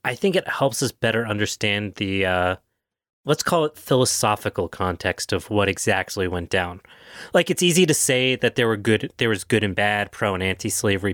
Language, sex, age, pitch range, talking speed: English, male, 30-49, 100-125 Hz, 195 wpm